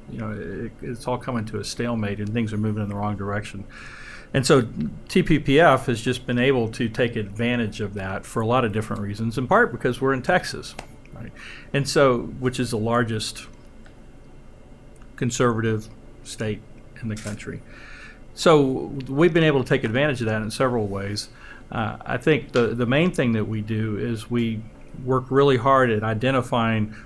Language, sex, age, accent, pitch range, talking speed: English, male, 50-69, American, 110-125 Hz, 180 wpm